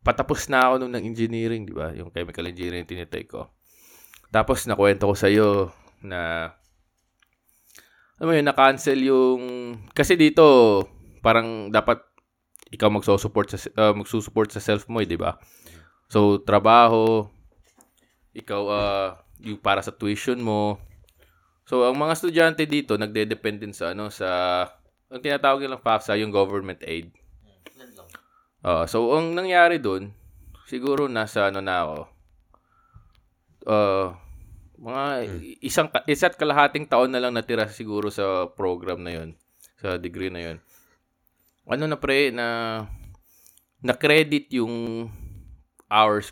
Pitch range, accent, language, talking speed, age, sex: 95-125 Hz, native, Filipino, 130 wpm, 20-39, male